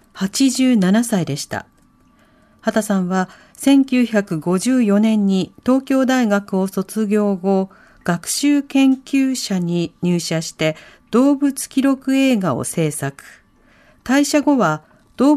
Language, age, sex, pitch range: Japanese, 50-69, female, 180-255 Hz